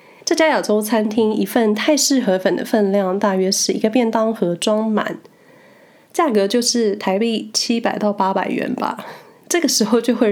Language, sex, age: Chinese, female, 20-39